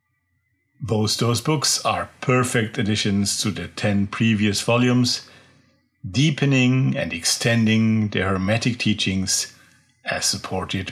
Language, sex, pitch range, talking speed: English, male, 110-130 Hz, 105 wpm